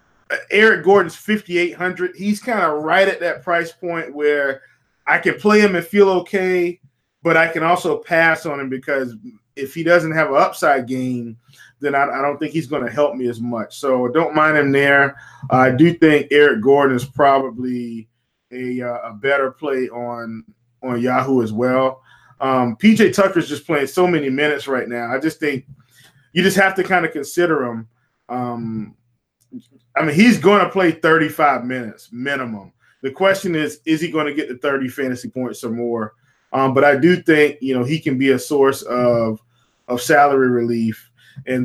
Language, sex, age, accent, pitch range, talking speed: English, male, 20-39, American, 125-170 Hz, 190 wpm